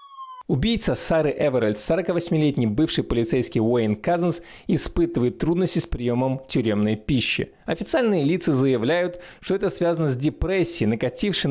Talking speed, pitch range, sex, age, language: 120 wpm, 130-180 Hz, male, 20-39, Russian